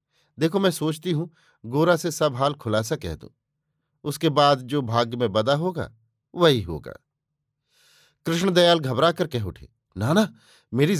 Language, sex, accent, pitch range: Hindi, male, native, 125-155 Hz